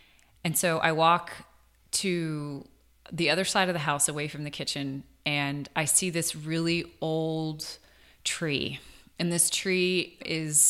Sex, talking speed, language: female, 145 wpm, English